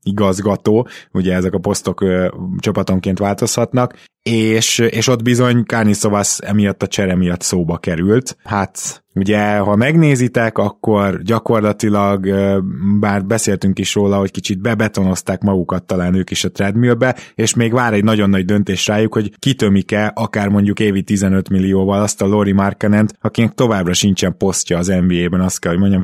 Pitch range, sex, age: 95-115 Hz, male, 20-39